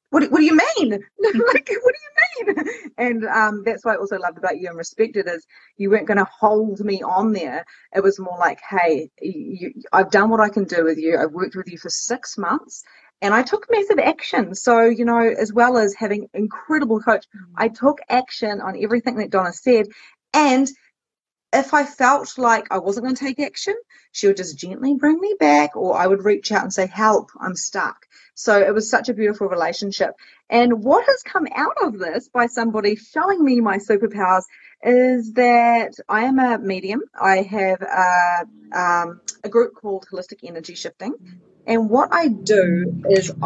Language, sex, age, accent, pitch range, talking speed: English, female, 30-49, Australian, 195-255 Hz, 195 wpm